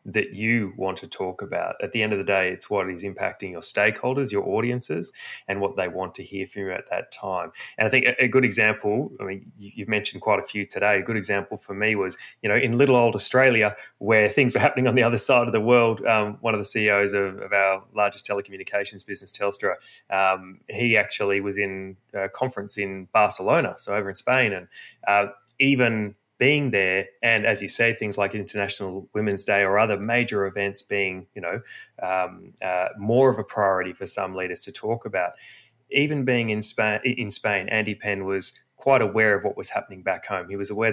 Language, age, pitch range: English, 20-39, 100-115 Hz